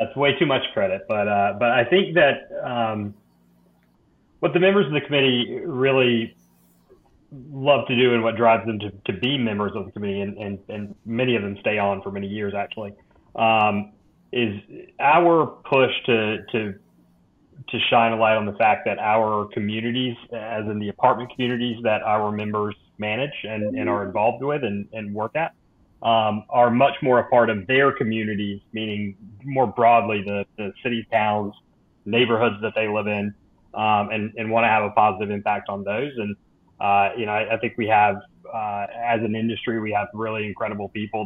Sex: male